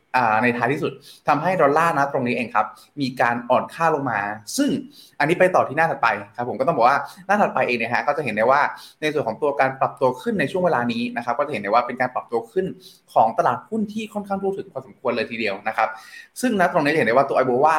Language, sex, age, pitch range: Thai, male, 20-39, 130-180 Hz